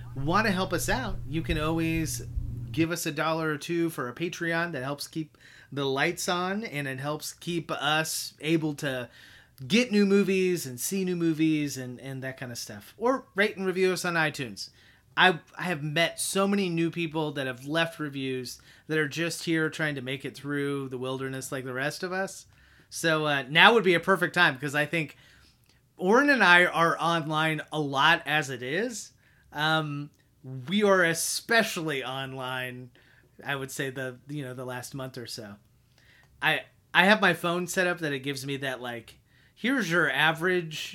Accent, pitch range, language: American, 130-170 Hz, English